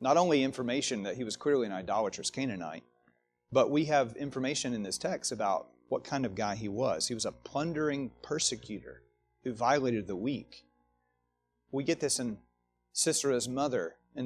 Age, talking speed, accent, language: 30-49, 170 wpm, American, English